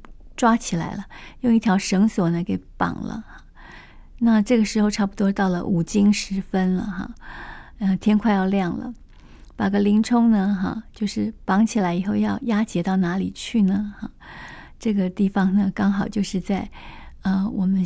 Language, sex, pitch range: Chinese, female, 190-220 Hz